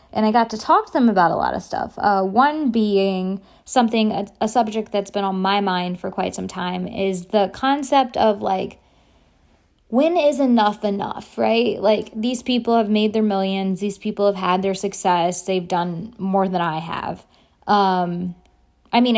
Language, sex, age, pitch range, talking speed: English, female, 20-39, 190-230 Hz, 190 wpm